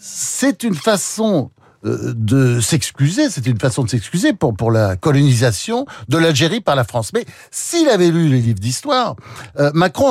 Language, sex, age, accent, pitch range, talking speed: French, male, 60-79, French, 120-180 Hz, 165 wpm